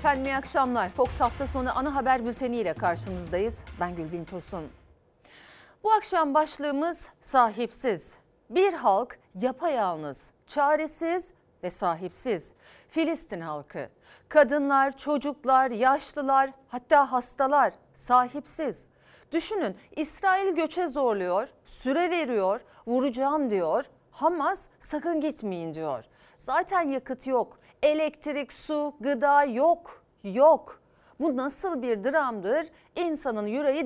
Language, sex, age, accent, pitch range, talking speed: Turkish, female, 40-59, native, 235-320 Hz, 100 wpm